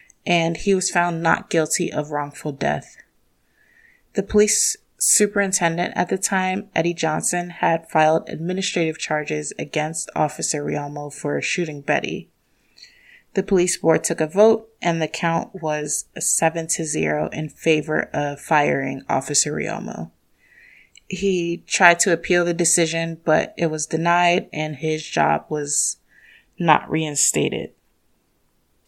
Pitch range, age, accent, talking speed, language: 155-185 Hz, 20-39, American, 130 wpm, English